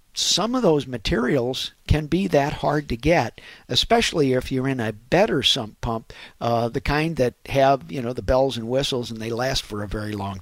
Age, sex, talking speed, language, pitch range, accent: 50-69, male, 205 wpm, English, 115-145 Hz, American